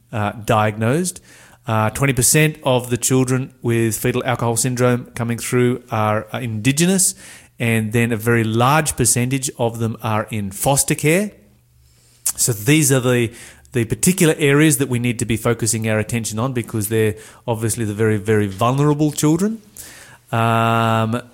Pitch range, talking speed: 115-150 Hz, 145 wpm